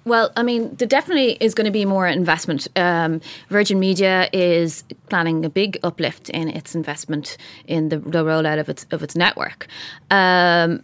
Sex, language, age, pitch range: female, English, 20-39, 160-195 Hz